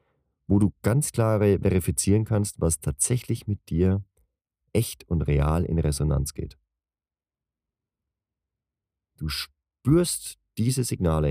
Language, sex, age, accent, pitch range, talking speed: German, male, 40-59, German, 75-105 Hz, 105 wpm